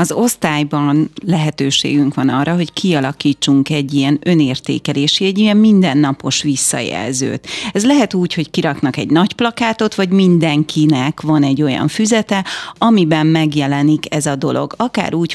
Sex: female